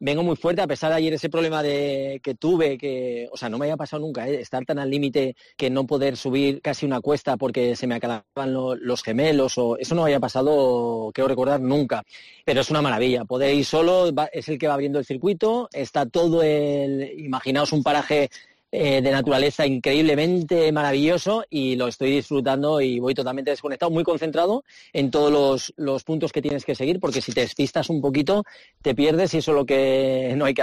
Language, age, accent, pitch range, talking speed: Spanish, 30-49, Spanish, 130-155 Hz, 210 wpm